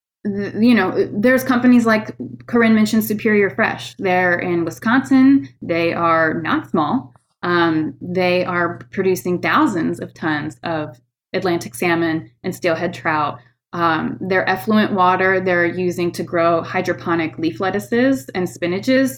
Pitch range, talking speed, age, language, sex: 170-220 Hz, 130 wpm, 20-39, English, female